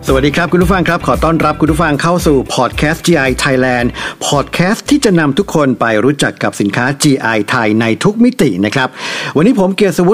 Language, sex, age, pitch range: Thai, male, 60-79, 120-160 Hz